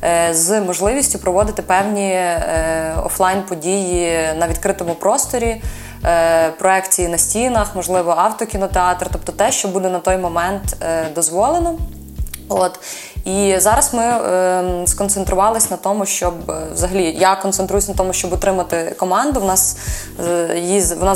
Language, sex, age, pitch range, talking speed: Ukrainian, female, 20-39, 175-205 Hz, 130 wpm